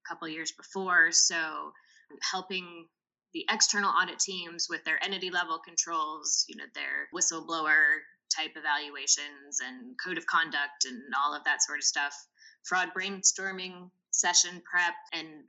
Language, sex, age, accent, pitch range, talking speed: English, female, 20-39, American, 170-210 Hz, 140 wpm